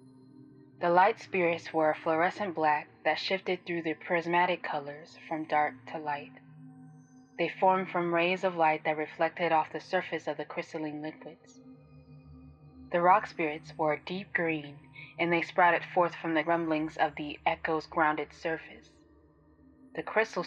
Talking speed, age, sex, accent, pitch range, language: 155 wpm, 20-39, female, American, 145-170 Hz, English